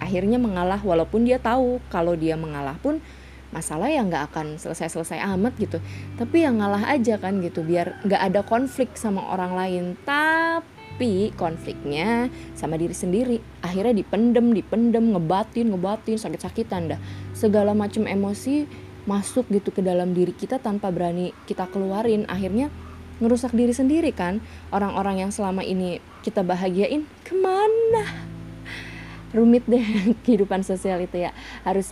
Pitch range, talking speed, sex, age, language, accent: 170-230 Hz, 135 wpm, female, 20-39, Indonesian, native